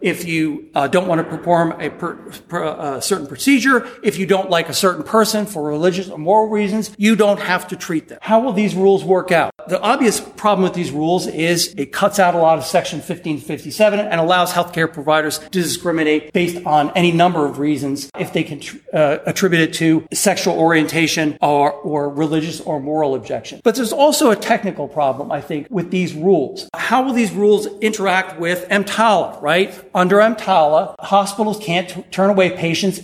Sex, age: male, 50-69